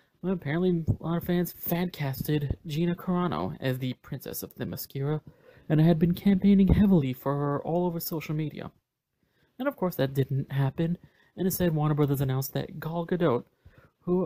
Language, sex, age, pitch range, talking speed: English, male, 30-49, 135-175 Hz, 175 wpm